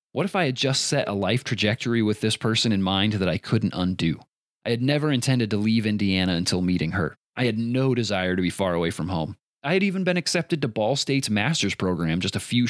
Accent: American